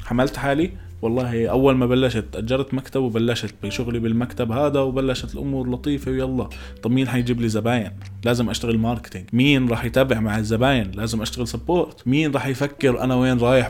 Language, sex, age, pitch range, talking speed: Arabic, male, 20-39, 120-155 Hz, 165 wpm